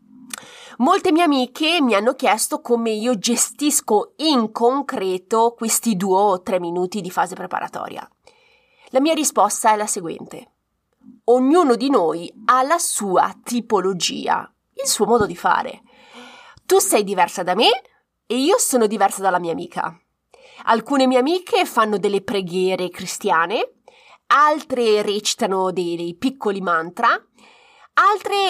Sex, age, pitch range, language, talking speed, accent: female, 30-49, 205-260 Hz, Italian, 135 wpm, native